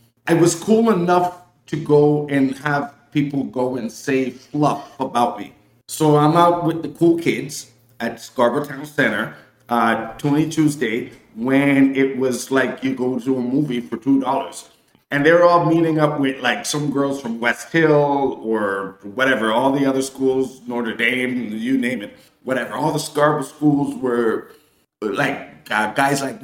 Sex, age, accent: male, 50-69, American